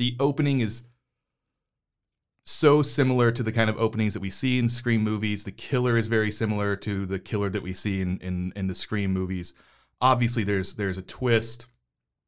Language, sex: English, male